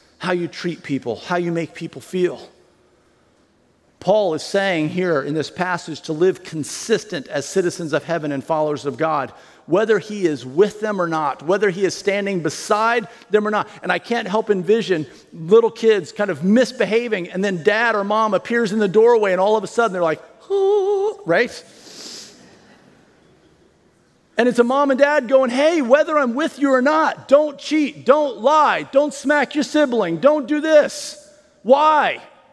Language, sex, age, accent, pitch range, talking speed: English, male, 40-59, American, 185-280 Hz, 175 wpm